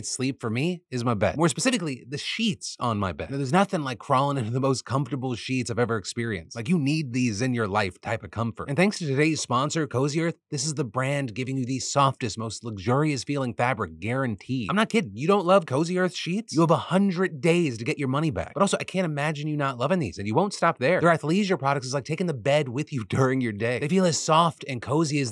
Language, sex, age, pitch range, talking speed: English, male, 30-49, 125-165 Hz, 260 wpm